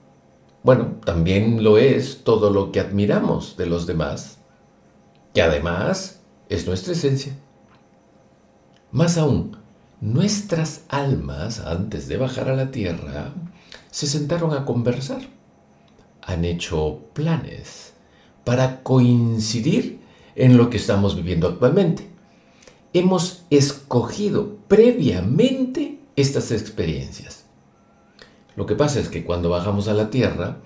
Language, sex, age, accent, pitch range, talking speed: Spanish, male, 50-69, Mexican, 90-140 Hz, 110 wpm